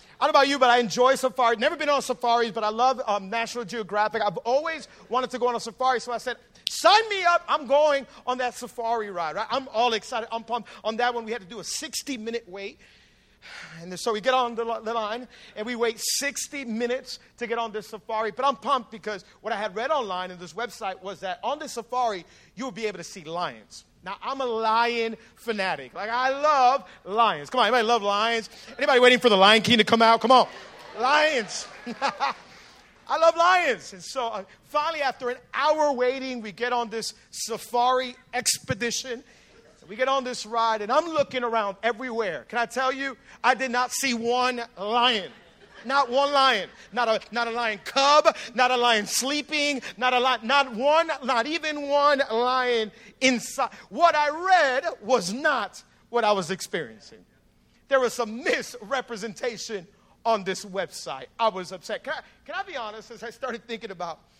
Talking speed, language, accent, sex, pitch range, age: 195 wpm, English, American, male, 220-260 Hz, 40-59